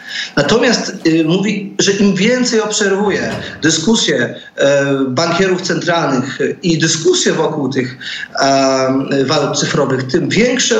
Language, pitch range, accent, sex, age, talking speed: Polish, 165-225 Hz, native, male, 40-59, 110 wpm